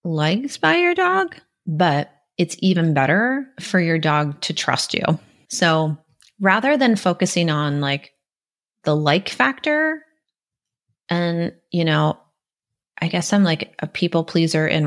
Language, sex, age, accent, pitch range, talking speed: English, female, 30-49, American, 155-190 Hz, 135 wpm